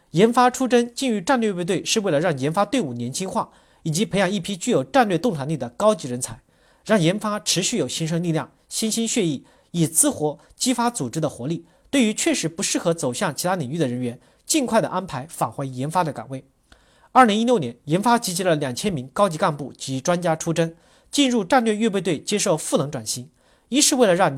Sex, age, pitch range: male, 40-59, 145-225 Hz